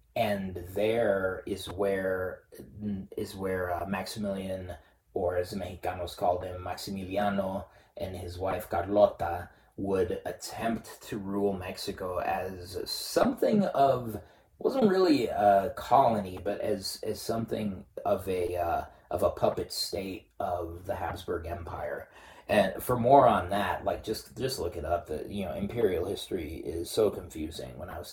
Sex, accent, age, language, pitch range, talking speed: male, American, 30-49, English, 85-100 Hz, 145 wpm